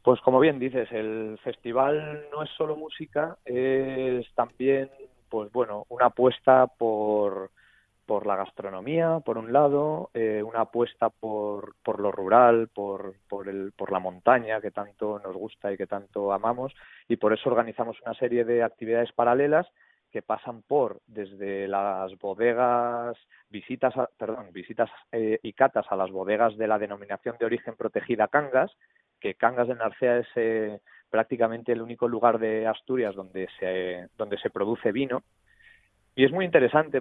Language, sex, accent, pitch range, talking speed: Spanish, male, Spanish, 105-125 Hz, 160 wpm